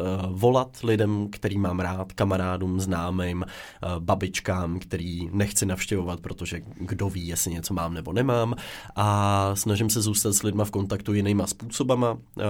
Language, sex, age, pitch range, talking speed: Czech, male, 20-39, 90-105 Hz, 140 wpm